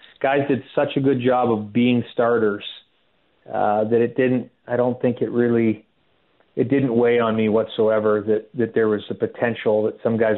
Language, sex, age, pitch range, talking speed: English, male, 30-49, 110-125 Hz, 190 wpm